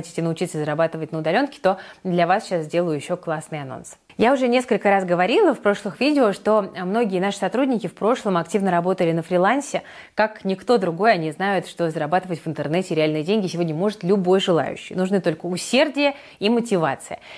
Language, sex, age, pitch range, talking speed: Russian, female, 20-39, 170-225 Hz, 175 wpm